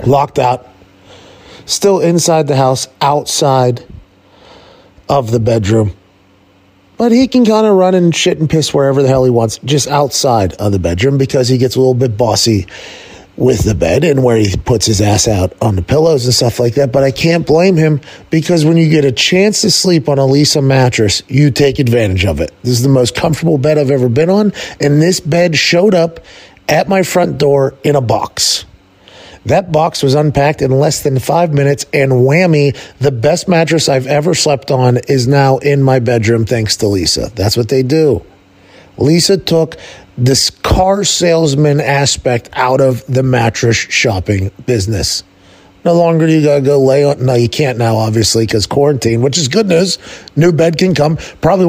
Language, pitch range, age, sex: English, 120-160 Hz, 30-49, male